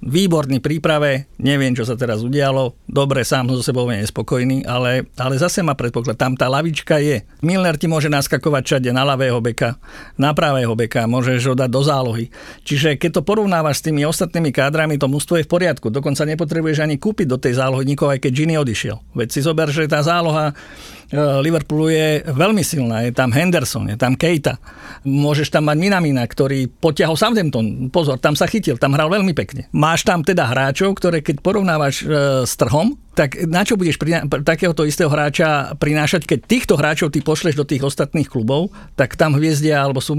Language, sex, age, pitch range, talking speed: Slovak, male, 50-69, 130-160 Hz, 185 wpm